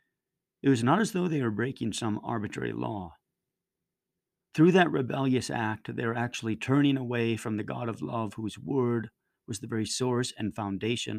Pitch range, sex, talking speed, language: 110-140 Hz, male, 175 wpm, English